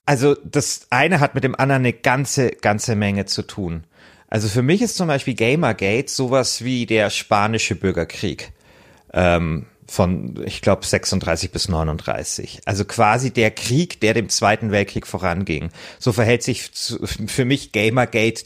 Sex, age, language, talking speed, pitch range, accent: male, 30-49, German, 155 wpm, 100-130 Hz, German